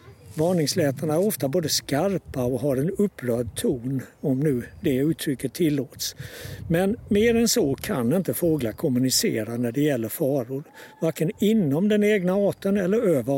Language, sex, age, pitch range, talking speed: Swedish, male, 60-79, 135-185 Hz, 155 wpm